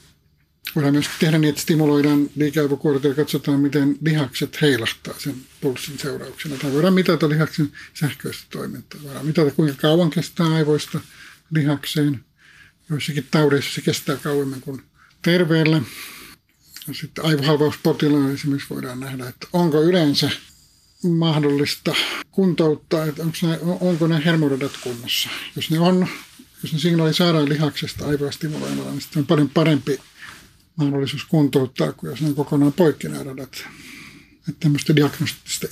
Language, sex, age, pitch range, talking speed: Finnish, male, 60-79, 140-160 Hz, 125 wpm